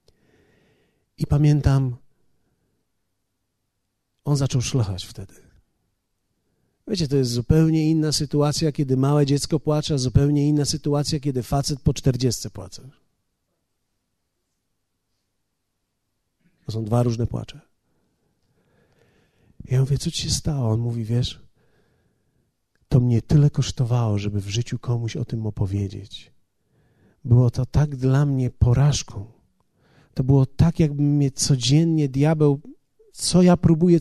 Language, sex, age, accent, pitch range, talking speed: Polish, male, 40-59, native, 110-155 Hz, 115 wpm